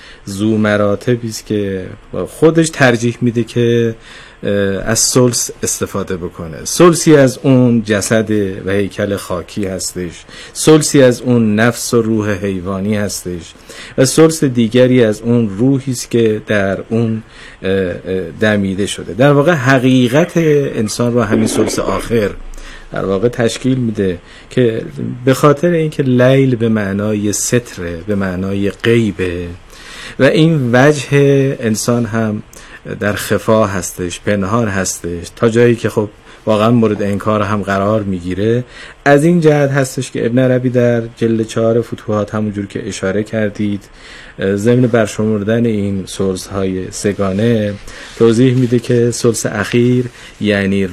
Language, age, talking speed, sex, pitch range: Persian, 50-69, 125 wpm, male, 100-125 Hz